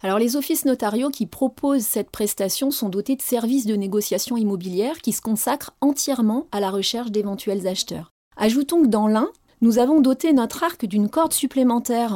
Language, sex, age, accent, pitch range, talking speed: French, female, 30-49, French, 200-255 Hz, 180 wpm